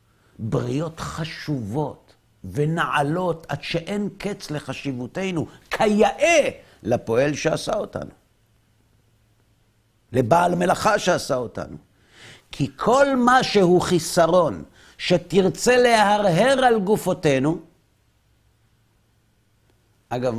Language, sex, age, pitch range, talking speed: Hebrew, male, 50-69, 105-170 Hz, 75 wpm